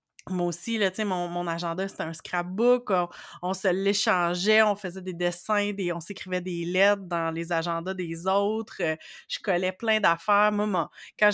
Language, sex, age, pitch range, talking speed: French, female, 30-49, 180-215 Hz, 185 wpm